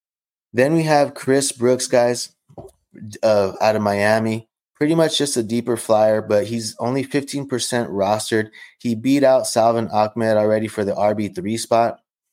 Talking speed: 150 wpm